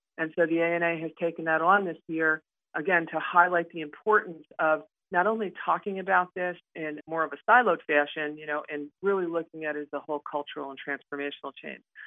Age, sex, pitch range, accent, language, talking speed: 40-59, female, 150-170 Hz, American, English, 205 wpm